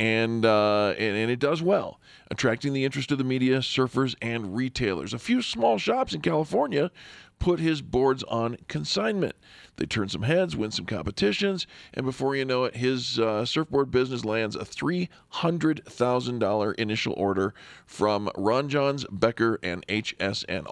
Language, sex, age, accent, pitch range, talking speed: English, male, 40-59, American, 110-140 Hz, 160 wpm